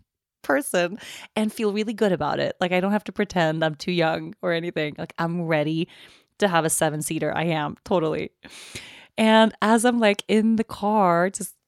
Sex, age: female, 20-39